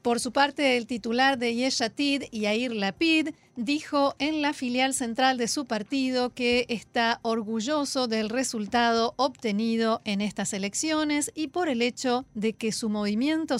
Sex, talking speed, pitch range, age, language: female, 150 wpm, 210-260 Hz, 40-59, Spanish